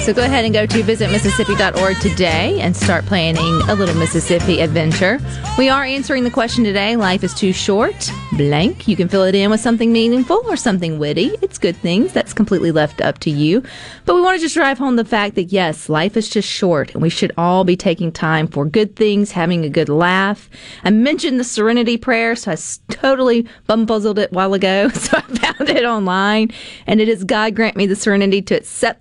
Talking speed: 215 wpm